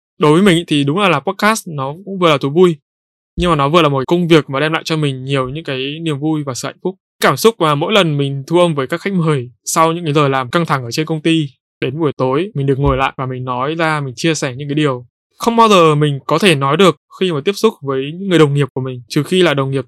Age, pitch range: 20-39, 135-175 Hz